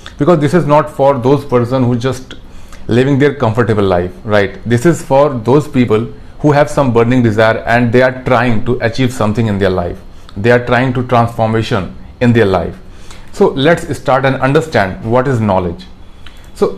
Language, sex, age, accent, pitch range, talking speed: Hindi, male, 40-59, native, 110-145 Hz, 180 wpm